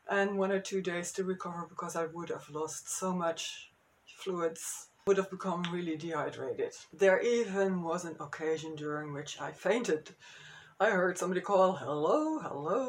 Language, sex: English, female